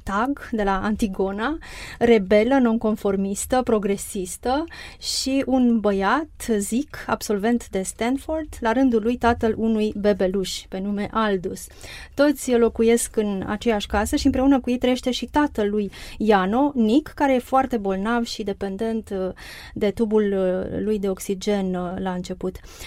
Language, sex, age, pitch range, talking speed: Romanian, female, 30-49, 200-260 Hz, 135 wpm